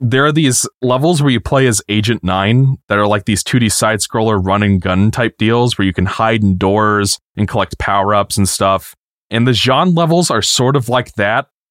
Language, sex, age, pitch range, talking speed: English, male, 20-39, 100-125 Hz, 200 wpm